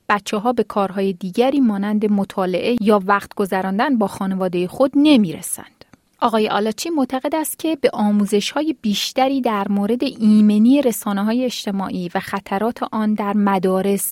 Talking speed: 130 wpm